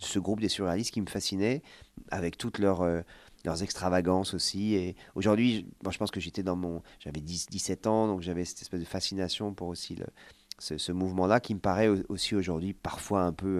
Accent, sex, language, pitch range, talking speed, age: French, male, French, 90-100 Hz, 205 wpm, 40-59